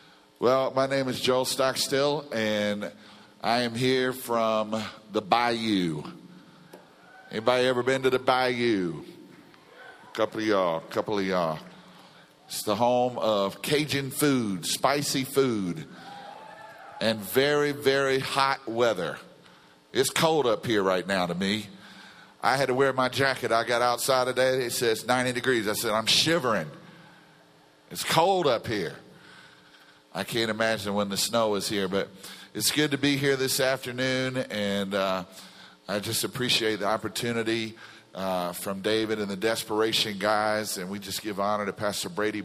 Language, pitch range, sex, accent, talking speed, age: English, 100-130 Hz, male, American, 155 wpm, 50-69